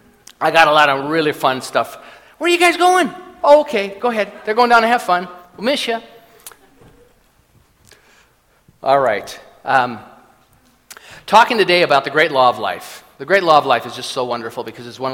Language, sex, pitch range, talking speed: English, male, 155-210 Hz, 195 wpm